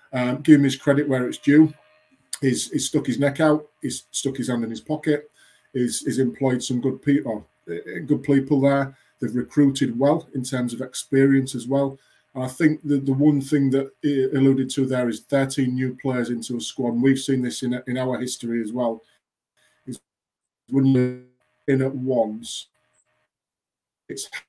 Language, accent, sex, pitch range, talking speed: English, British, male, 120-135 Hz, 185 wpm